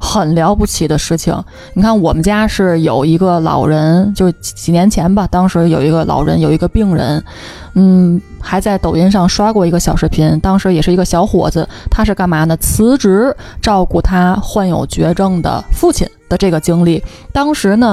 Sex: female